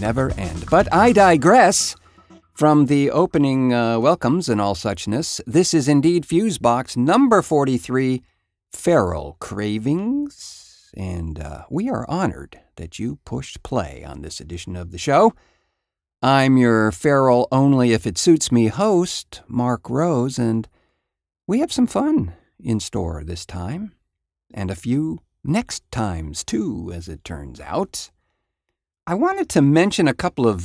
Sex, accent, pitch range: male, American, 90-135 Hz